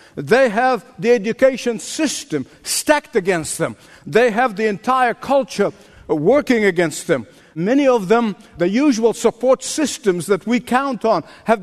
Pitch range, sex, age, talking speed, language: 210-260 Hz, male, 50-69, 145 wpm, English